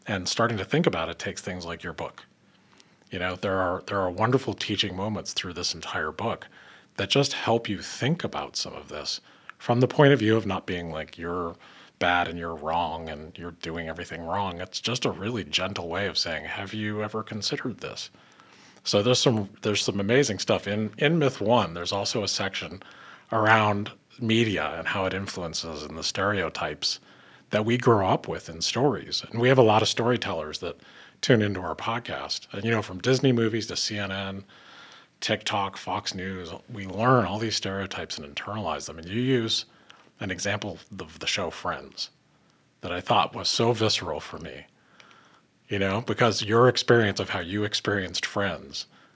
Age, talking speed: 40-59, 190 wpm